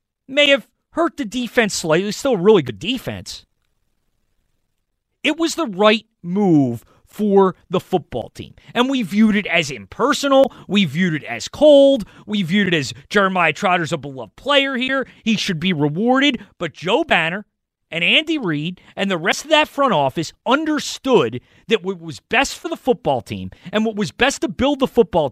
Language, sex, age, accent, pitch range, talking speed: English, male, 30-49, American, 150-245 Hz, 180 wpm